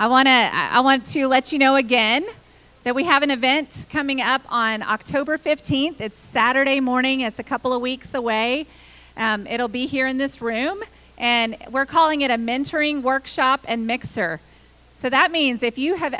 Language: English